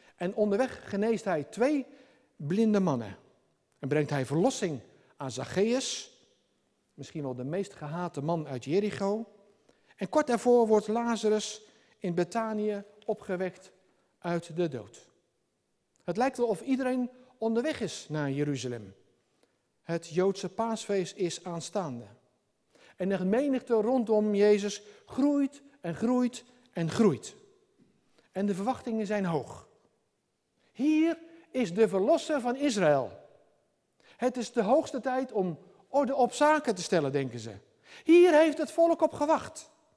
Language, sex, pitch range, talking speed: Dutch, male, 170-255 Hz, 130 wpm